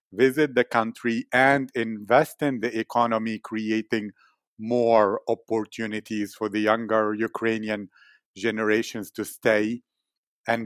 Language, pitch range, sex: English, 105-120 Hz, male